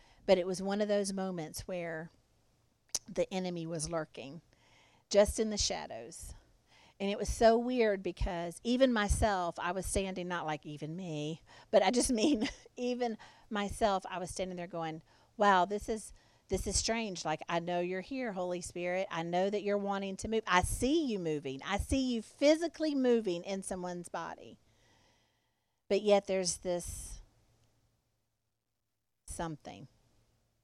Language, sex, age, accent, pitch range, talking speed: English, female, 50-69, American, 160-210 Hz, 155 wpm